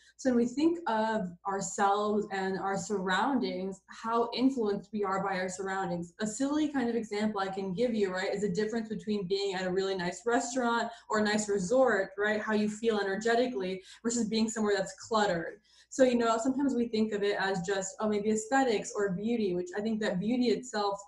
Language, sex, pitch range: English, female, 195-220 Hz